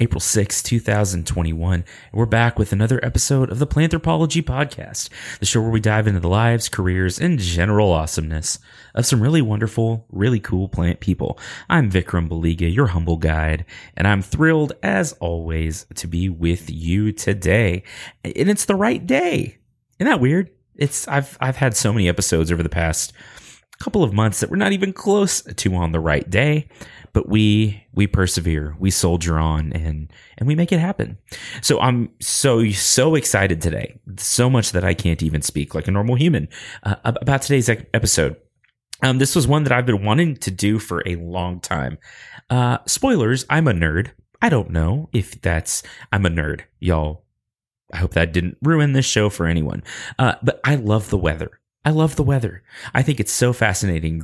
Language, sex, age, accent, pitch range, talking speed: English, male, 30-49, American, 90-125 Hz, 185 wpm